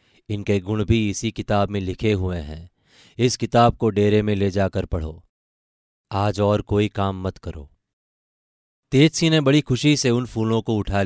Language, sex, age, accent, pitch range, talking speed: Hindi, male, 30-49, native, 95-115 Hz, 175 wpm